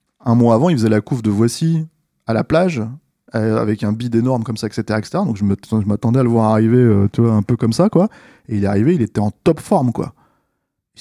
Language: French